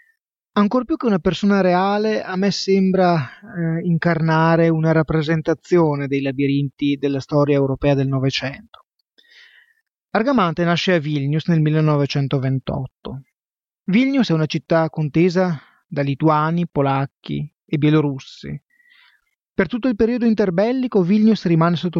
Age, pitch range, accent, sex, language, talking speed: 30-49, 150-200 Hz, native, male, Italian, 120 wpm